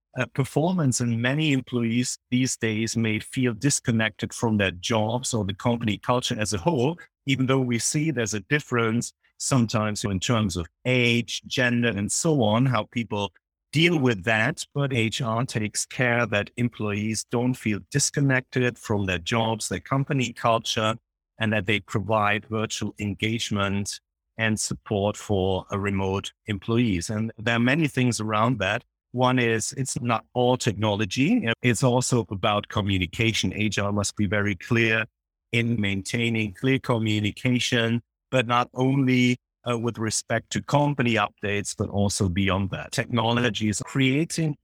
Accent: German